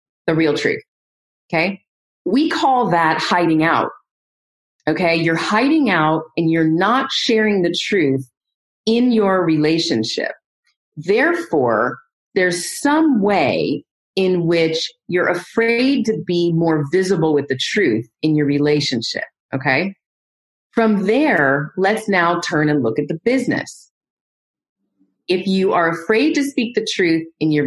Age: 30-49